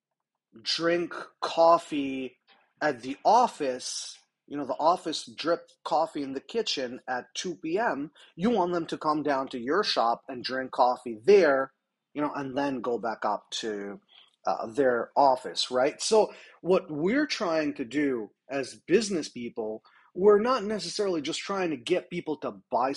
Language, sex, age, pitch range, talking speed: English, male, 30-49, 140-190 Hz, 160 wpm